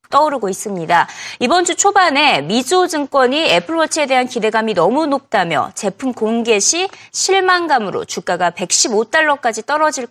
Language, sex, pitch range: Korean, female, 220-340 Hz